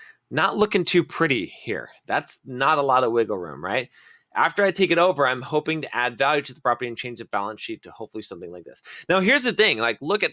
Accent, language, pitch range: American, English, 115-175 Hz